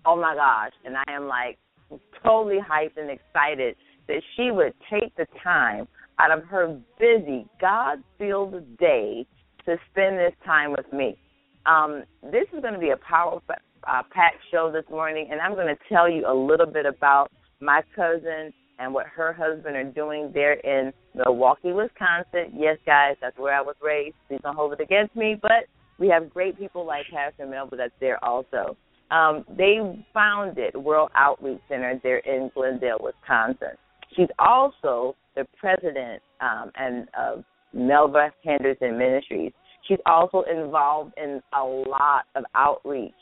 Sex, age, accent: female, 30-49, American